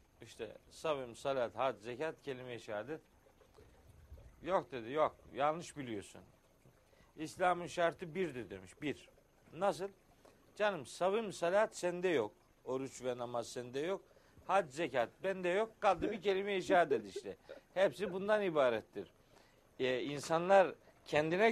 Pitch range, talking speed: 135-190 Hz, 120 wpm